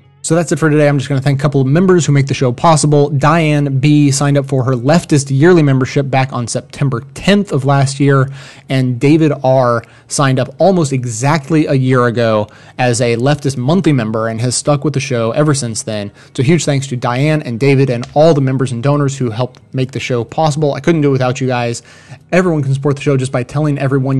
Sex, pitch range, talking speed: male, 125-150 Hz, 235 wpm